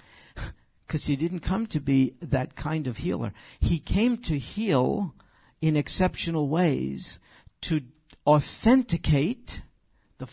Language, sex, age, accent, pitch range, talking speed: English, male, 50-69, American, 125-200 Hz, 115 wpm